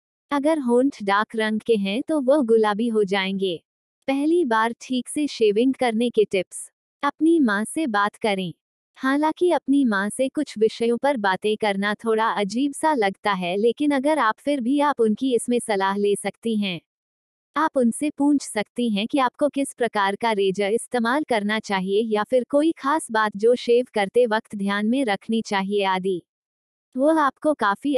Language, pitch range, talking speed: Hindi, 205-270 Hz, 175 wpm